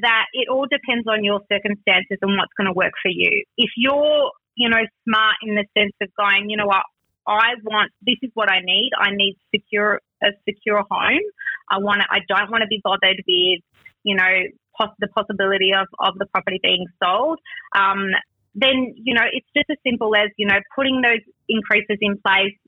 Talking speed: 205 wpm